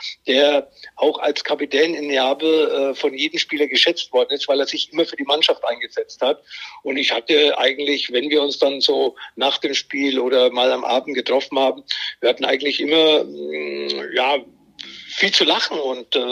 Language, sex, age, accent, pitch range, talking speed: German, male, 50-69, German, 140-180 Hz, 175 wpm